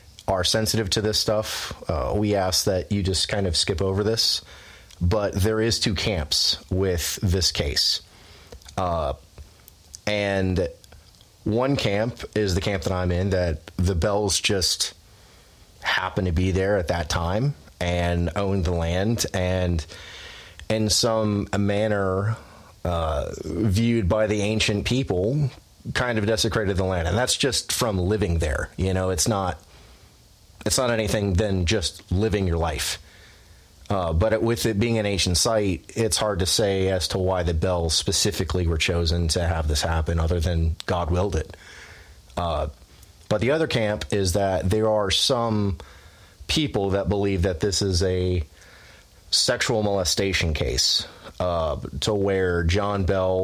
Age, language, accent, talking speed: 30-49, English, American, 155 wpm